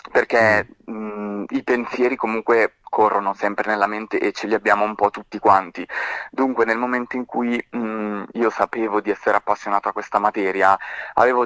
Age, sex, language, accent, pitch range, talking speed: 20-39, male, Italian, native, 105-120 Hz, 155 wpm